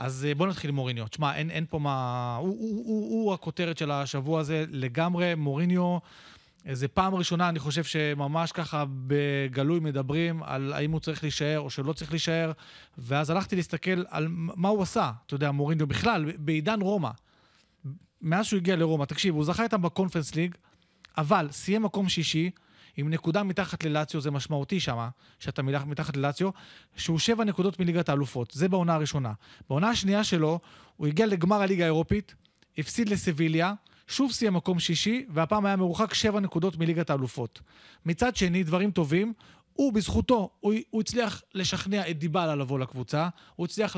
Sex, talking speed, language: male, 165 wpm, Hebrew